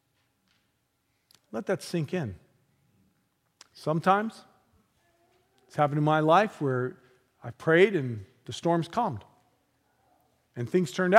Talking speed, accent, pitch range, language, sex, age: 105 wpm, American, 120-170 Hz, English, male, 50-69